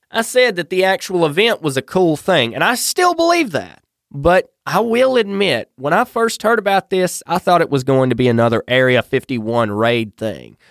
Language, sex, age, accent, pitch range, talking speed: English, male, 20-39, American, 120-190 Hz, 205 wpm